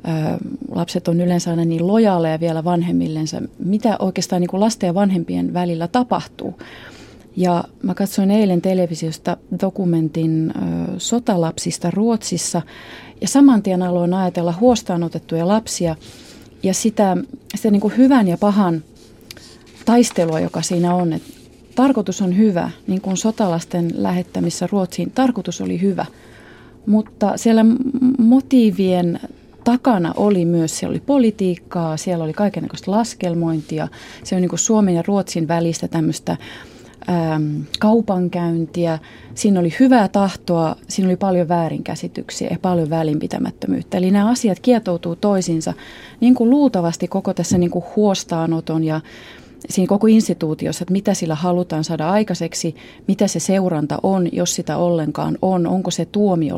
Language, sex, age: Finnish, female, 30-49